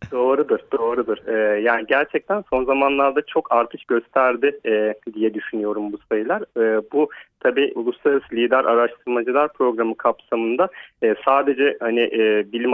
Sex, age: male, 40-59